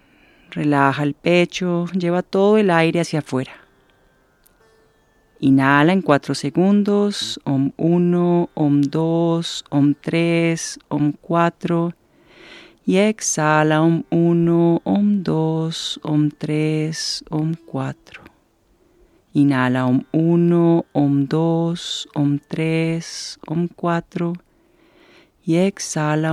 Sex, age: female, 40-59